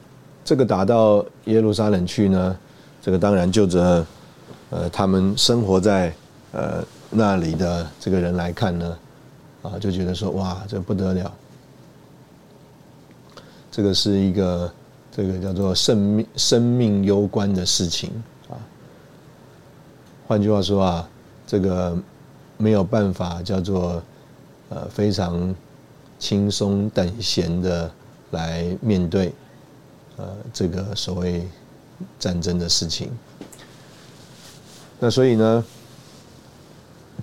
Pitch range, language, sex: 90-110 Hz, Chinese, male